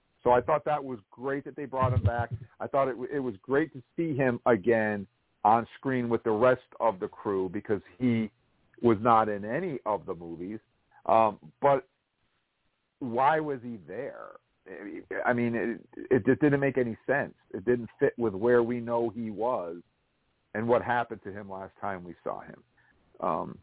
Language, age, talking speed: English, 50-69, 185 wpm